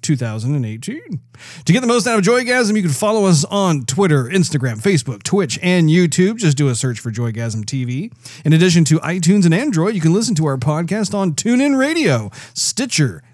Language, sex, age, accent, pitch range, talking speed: English, male, 40-59, American, 125-180 Hz, 190 wpm